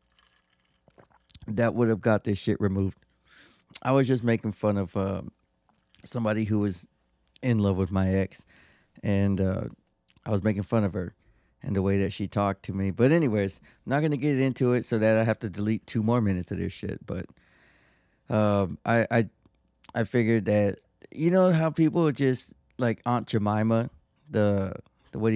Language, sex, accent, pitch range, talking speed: English, male, American, 100-115 Hz, 185 wpm